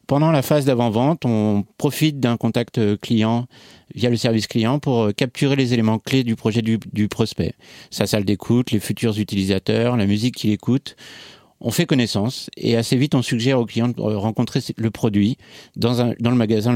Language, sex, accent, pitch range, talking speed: French, male, French, 110-130 Hz, 185 wpm